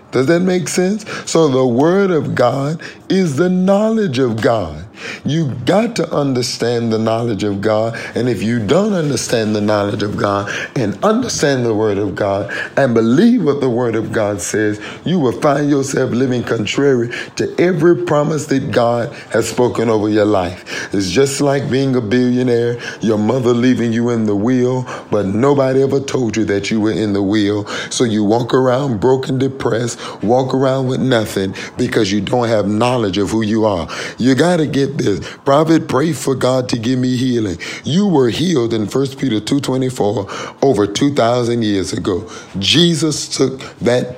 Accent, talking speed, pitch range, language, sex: American, 180 wpm, 110-140 Hz, English, male